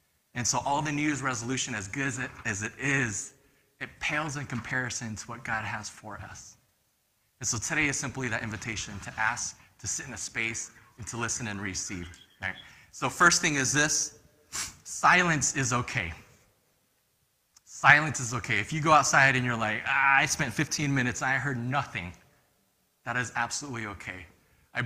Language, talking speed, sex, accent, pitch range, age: English, 180 wpm, male, American, 105-140 Hz, 20-39